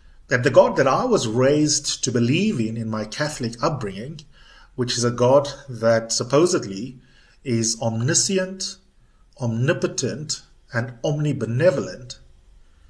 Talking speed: 115 wpm